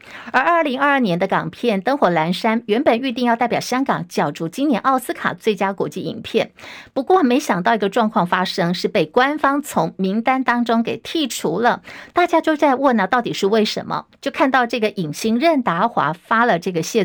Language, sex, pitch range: Chinese, female, 200-265 Hz